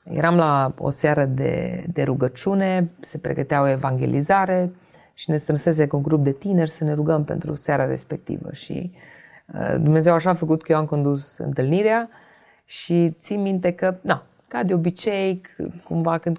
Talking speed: 170 wpm